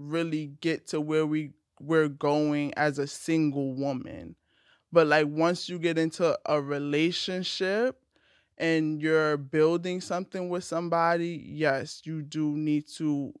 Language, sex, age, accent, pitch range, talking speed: English, male, 20-39, American, 145-170 Hz, 135 wpm